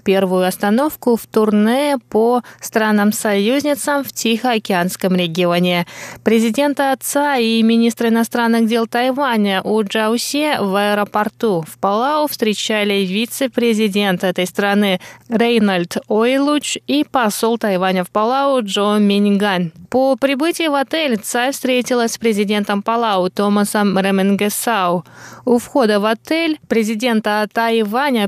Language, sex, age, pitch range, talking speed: Russian, female, 20-39, 200-245 Hz, 110 wpm